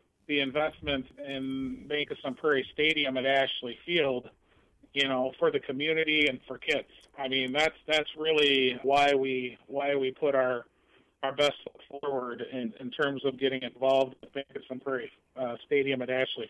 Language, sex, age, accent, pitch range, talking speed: English, male, 40-59, American, 130-150 Hz, 175 wpm